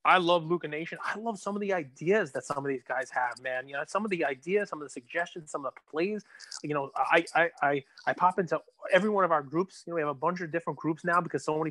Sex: male